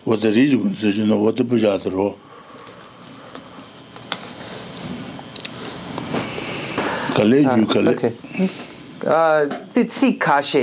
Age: 50-69